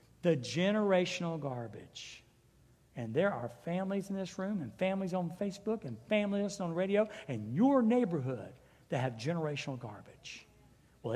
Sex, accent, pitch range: male, American, 180-280 Hz